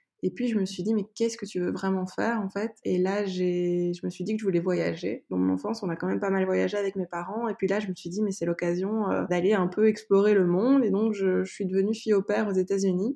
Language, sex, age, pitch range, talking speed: French, female, 20-39, 180-215 Hz, 300 wpm